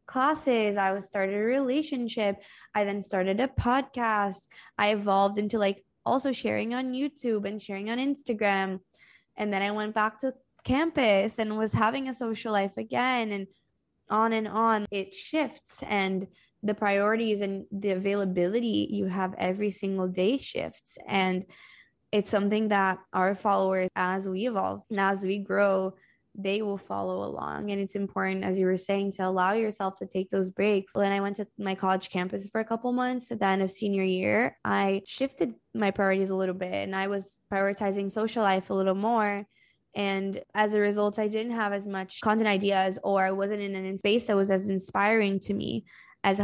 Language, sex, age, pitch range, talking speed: English, female, 20-39, 195-220 Hz, 185 wpm